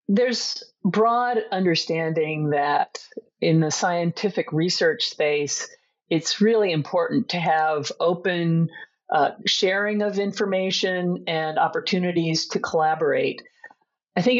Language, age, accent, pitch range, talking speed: English, 50-69, American, 155-200 Hz, 105 wpm